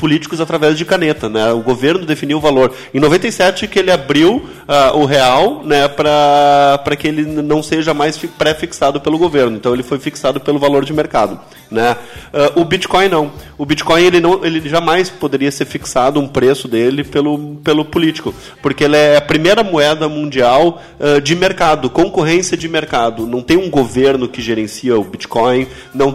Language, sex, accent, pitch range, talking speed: Portuguese, male, Brazilian, 130-160 Hz, 180 wpm